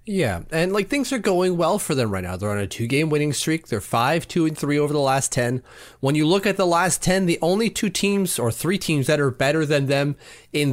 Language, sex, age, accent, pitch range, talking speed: English, male, 30-49, American, 120-180 Hz, 255 wpm